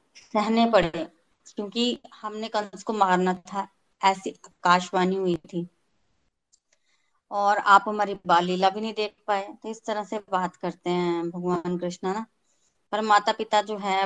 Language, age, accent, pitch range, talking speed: Hindi, 20-39, native, 190-225 Hz, 150 wpm